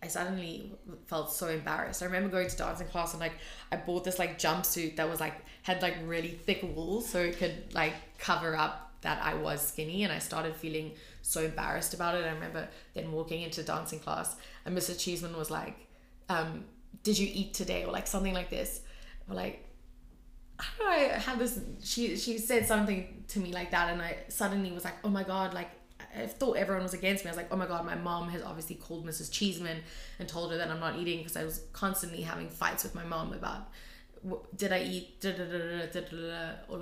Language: English